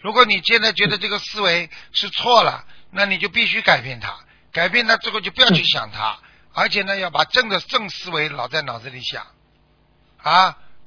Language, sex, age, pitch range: Chinese, male, 50-69, 170-205 Hz